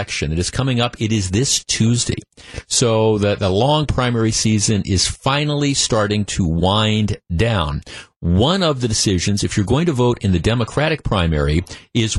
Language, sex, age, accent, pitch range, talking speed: English, male, 50-69, American, 100-135 Hz, 165 wpm